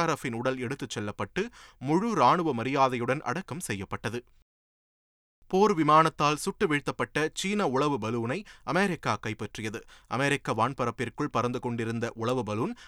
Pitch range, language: 115-155 Hz, Tamil